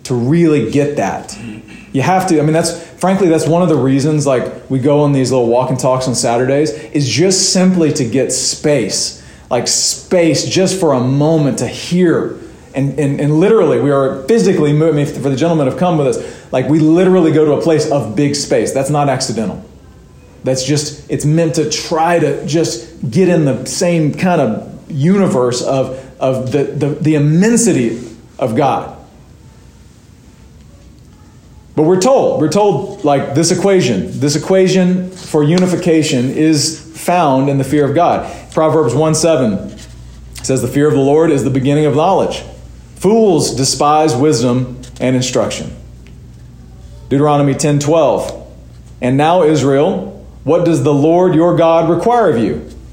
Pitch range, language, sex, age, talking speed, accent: 130-165 Hz, English, male, 40-59, 165 wpm, American